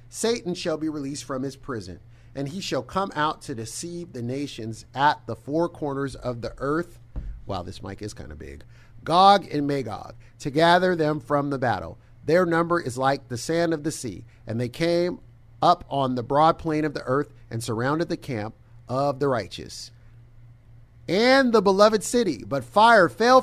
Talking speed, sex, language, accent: 185 wpm, male, English, American